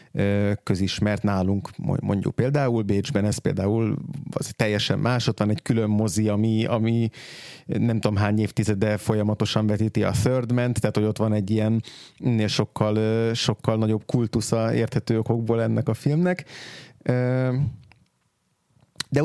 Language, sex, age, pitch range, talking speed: Hungarian, male, 30-49, 105-130 Hz, 130 wpm